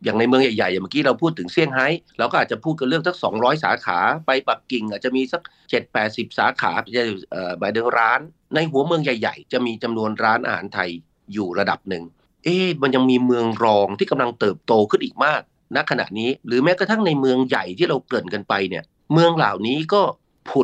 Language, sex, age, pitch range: Thai, male, 30-49, 110-145 Hz